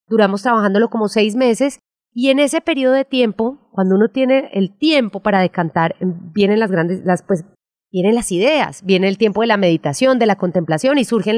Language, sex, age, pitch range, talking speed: Spanish, female, 30-49, 185-240 Hz, 195 wpm